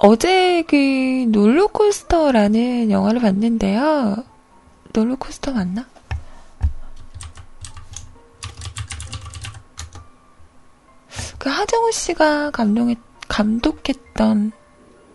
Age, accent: 20-39, native